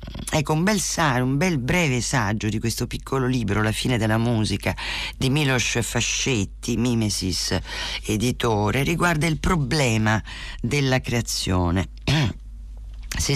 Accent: native